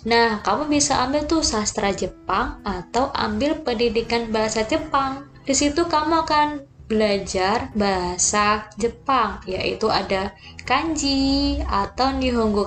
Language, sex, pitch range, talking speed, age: Indonesian, female, 210-285 Hz, 115 wpm, 20-39